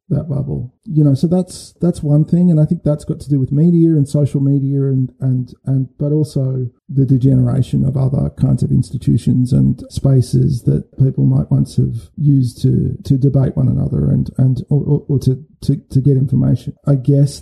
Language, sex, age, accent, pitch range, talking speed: English, male, 40-59, Australian, 130-145 Hz, 200 wpm